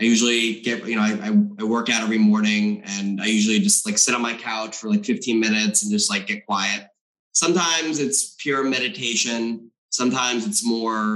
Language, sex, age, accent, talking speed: English, male, 20-39, American, 195 wpm